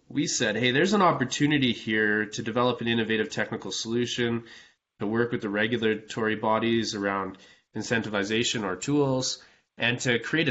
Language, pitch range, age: English, 110-130 Hz, 20-39